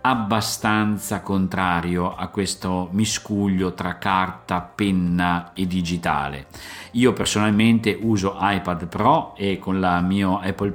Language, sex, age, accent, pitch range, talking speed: Italian, male, 50-69, native, 90-110 Hz, 110 wpm